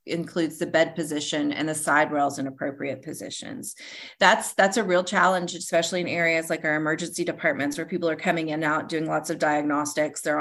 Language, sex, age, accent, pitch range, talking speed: English, female, 30-49, American, 150-175 Hz, 195 wpm